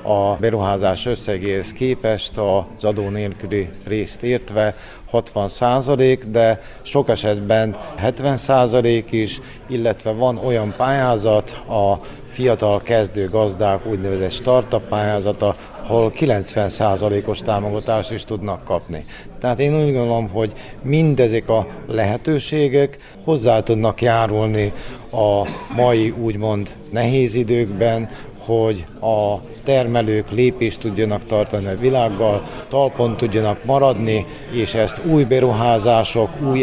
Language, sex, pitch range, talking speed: Hungarian, male, 105-125 Hz, 110 wpm